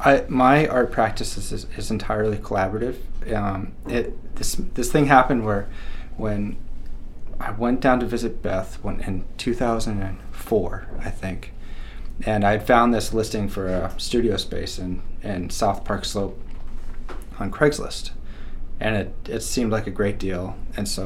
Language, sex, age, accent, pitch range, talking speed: English, male, 20-39, American, 100-120 Hz, 150 wpm